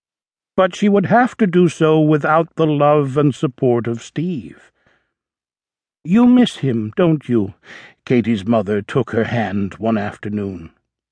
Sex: male